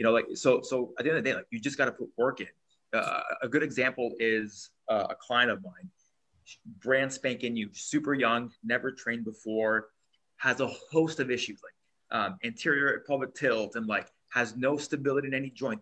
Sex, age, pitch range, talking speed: male, 20-39, 115-135 Hz, 210 wpm